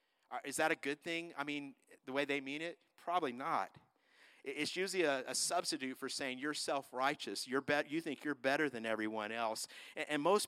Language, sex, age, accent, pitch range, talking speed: English, male, 50-69, American, 135-165 Hz, 195 wpm